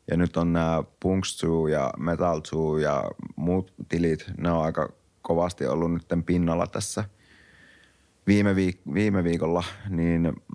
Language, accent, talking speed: Finnish, native, 130 wpm